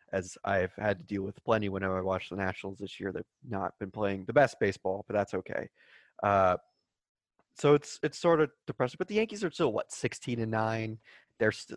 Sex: male